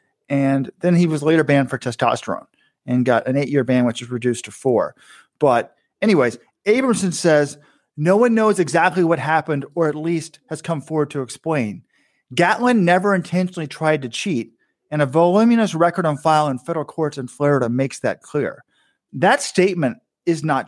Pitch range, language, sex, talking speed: 150-190 Hz, English, male, 175 wpm